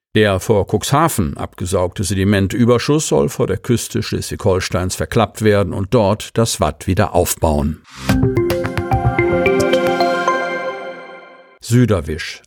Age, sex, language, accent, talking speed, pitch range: 50-69, male, German, German, 90 wpm, 100-125 Hz